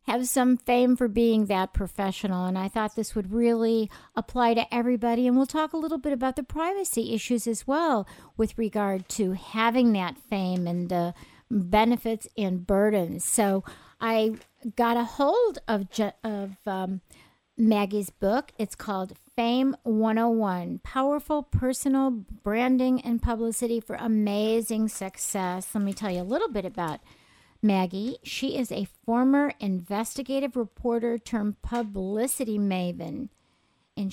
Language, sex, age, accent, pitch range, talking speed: English, female, 50-69, American, 200-250 Hz, 140 wpm